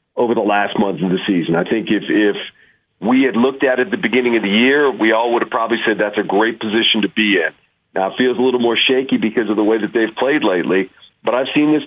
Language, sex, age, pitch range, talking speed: English, male, 40-59, 100-120 Hz, 275 wpm